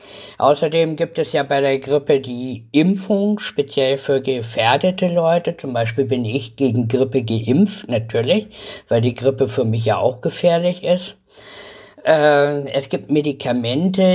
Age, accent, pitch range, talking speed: 50-69, German, 130-165 Hz, 145 wpm